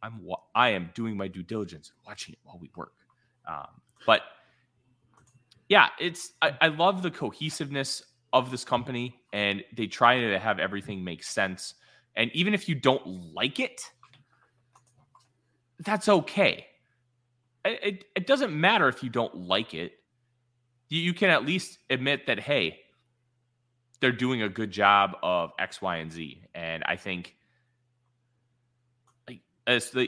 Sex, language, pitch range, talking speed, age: male, English, 100-130 Hz, 145 wpm, 30-49